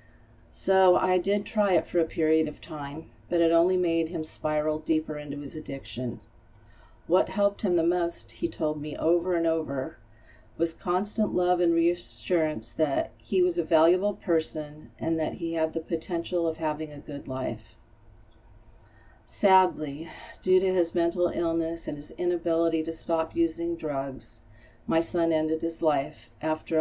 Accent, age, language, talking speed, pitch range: American, 40-59, English, 160 wpm, 135-170 Hz